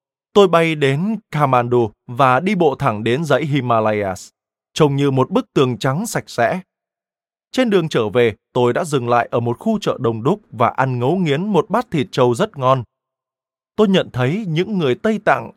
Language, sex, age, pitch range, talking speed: Vietnamese, male, 20-39, 120-180 Hz, 195 wpm